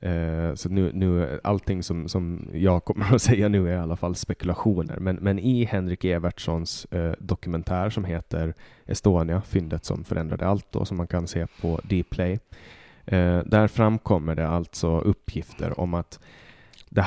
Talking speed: 160 wpm